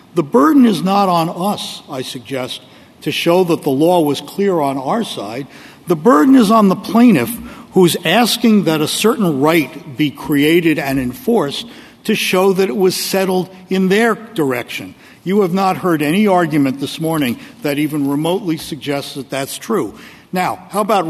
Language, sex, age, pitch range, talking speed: English, male, 60-79, 150-205 Hz, 175 wpm